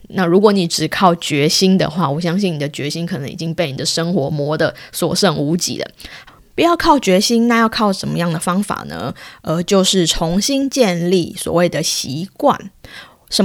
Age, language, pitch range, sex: 20-39, Chinese, 165-225 Hz, female